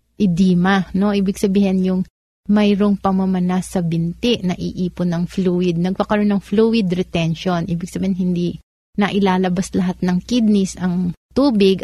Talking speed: 135 wpm